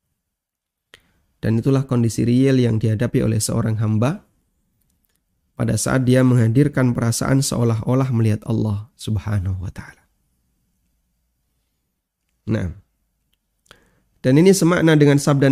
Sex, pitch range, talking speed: male, 110-130 Hz, 100 wpm